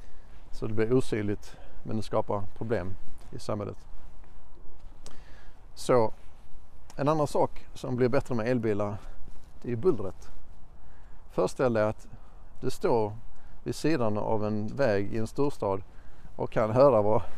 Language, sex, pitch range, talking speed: Swedish, male, 95-120 Hz, 135 wpm